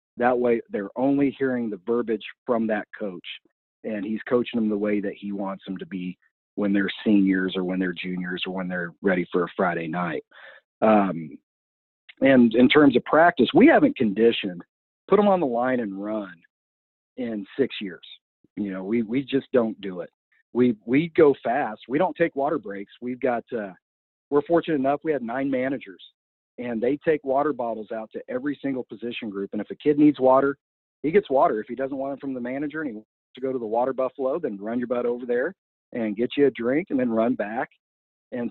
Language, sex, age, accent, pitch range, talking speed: English, male, 50-69, American, 100-130 Hz, 210 wpm